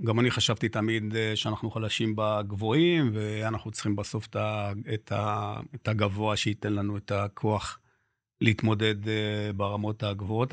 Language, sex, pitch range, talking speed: Hebrew, male, 105-125 Hz, 110 wpm